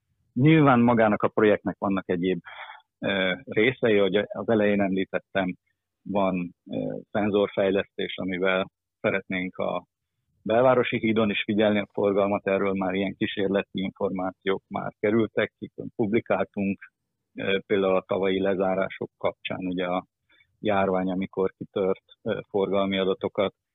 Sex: male